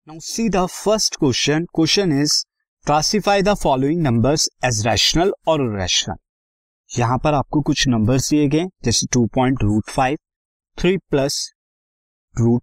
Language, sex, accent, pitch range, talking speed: Hindi, male, native, 110-155 Hz, 105 wpm